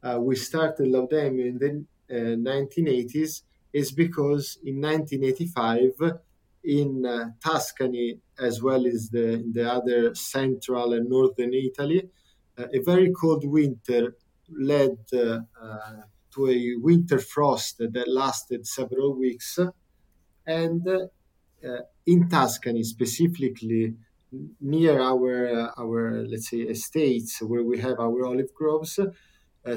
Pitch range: 120-155 Hz